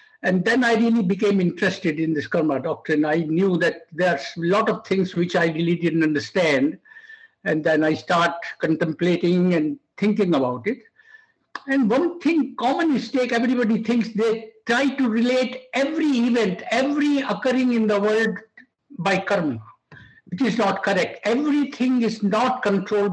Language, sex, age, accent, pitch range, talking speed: English, male, 60-79, Indian, 170-240 Hz, 160 wpm